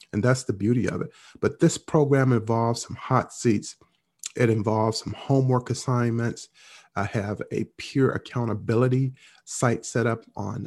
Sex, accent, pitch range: male, American, 105-130 Hz